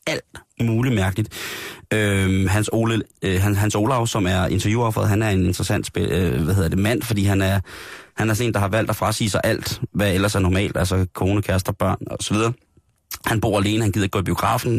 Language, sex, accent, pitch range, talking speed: Danish, male, native, 95-110 Hz, 210 wpm